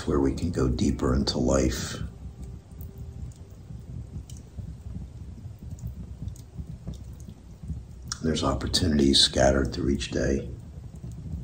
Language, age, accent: English, 60-79, American